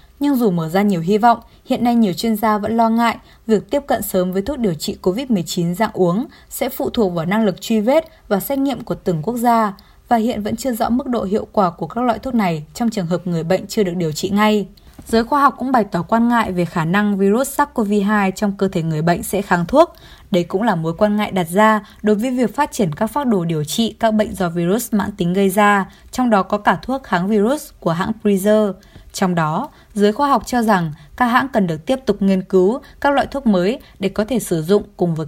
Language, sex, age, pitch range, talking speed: Vietnamese, female, 20-39, 190-235 Hz, 250 wpm